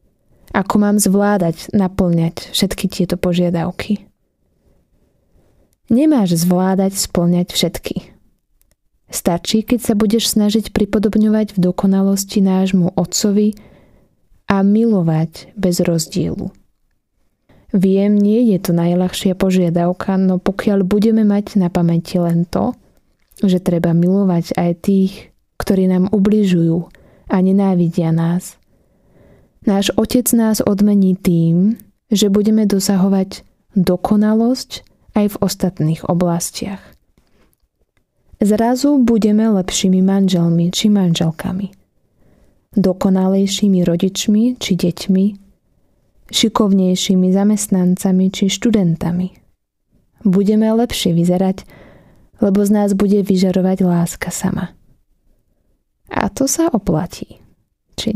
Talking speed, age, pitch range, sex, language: 95 wpm, 20-39, 180-210 Hz, female, Slovak